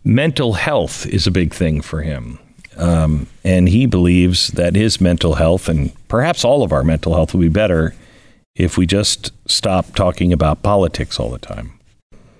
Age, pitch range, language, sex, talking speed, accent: 50-69, 85-110 Hz, English, male, 175 wpm, American